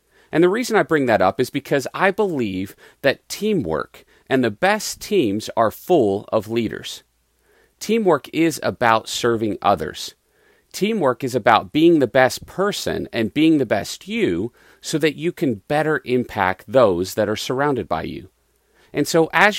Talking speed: 160 wpm